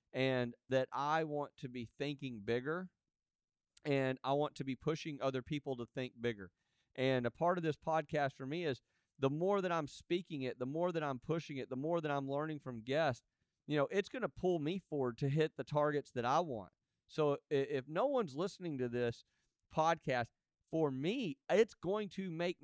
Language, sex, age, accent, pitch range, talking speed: English, male, 40-59, American, 125-165 Hz, 205 wpm